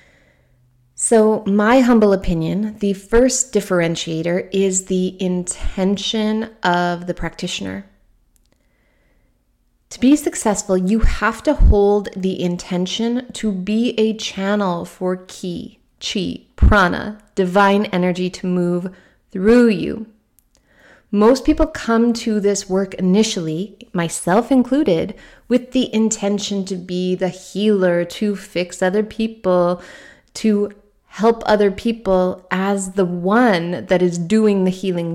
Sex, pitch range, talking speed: female, 180-225 Hz, 115 wpm